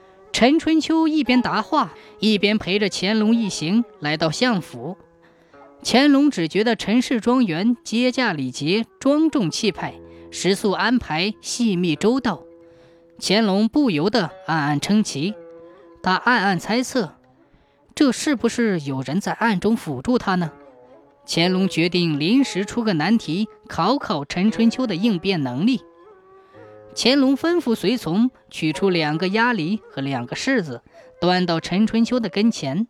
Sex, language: female, Chinese